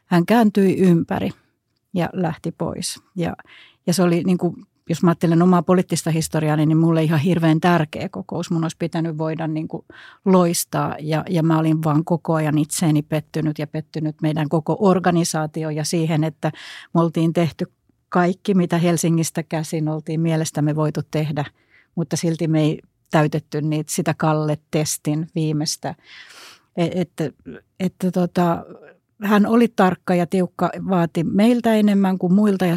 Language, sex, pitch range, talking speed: Finnish, female, 155-185 Hz, 150 wpm